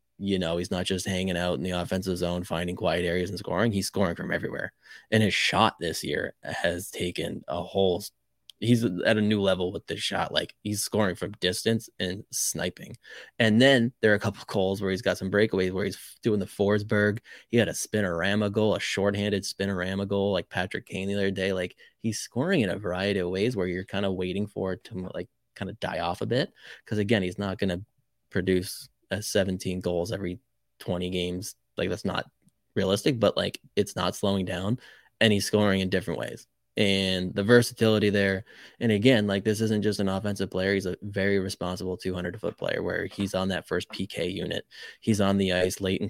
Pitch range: 90-105 Hz